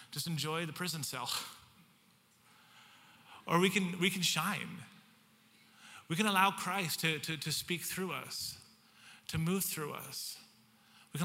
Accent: American